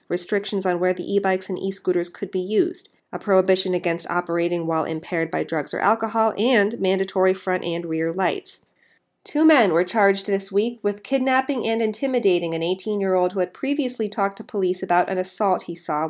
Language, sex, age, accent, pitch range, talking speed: English, female, 40-59, American, 170-205 Hz, 185 wpm